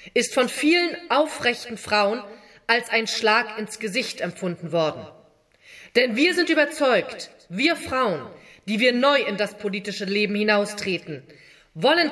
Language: German